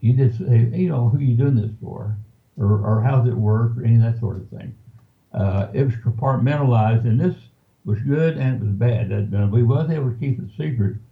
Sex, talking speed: male, 235 wpm